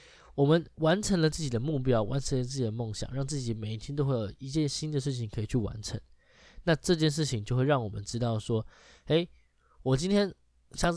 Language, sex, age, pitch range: Chinese, male, 20-39, 110-160 Hz